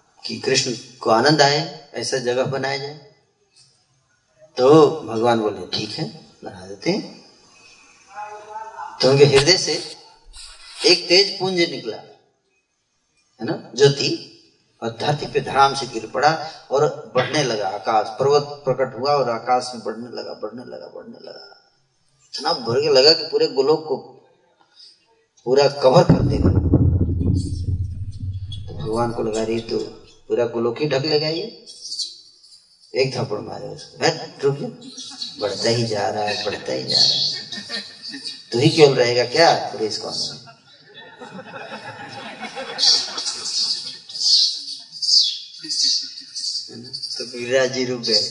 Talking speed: 115 wpm